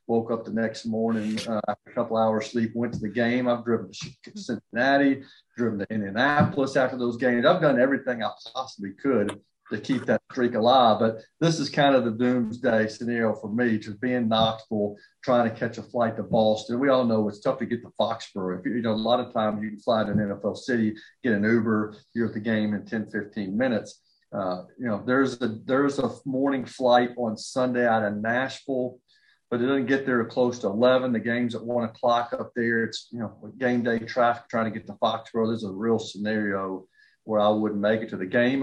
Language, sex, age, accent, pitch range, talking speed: English, male, 40-59, American, 110-125 Hz, 220 wpm